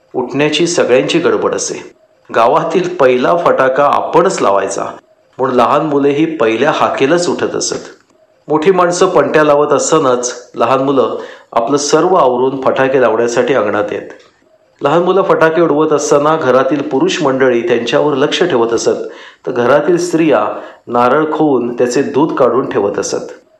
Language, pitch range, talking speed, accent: Marathi, 125-175 Hz, 135 wpm, native